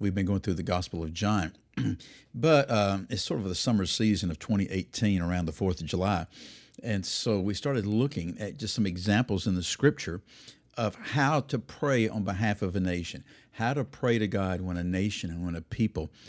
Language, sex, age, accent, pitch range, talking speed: English, male, 50-69, American, 95-115 Hz, 205 wpm